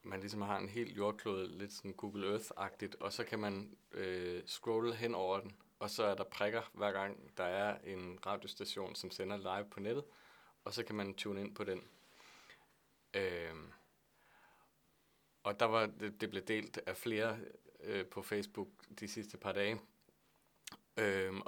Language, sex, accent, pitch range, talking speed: Danish, male, native, 95-110 Hz, 170 wpm